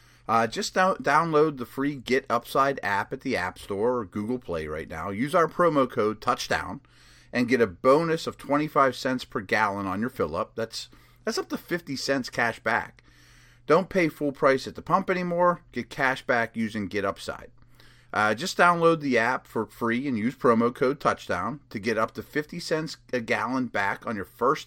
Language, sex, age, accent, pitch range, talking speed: English, male, 30-49, American, 120-155 Hz, 195 wpm